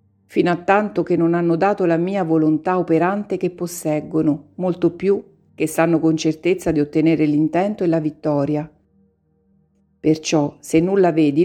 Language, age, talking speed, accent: Italian, 50-69, 150 wpm, native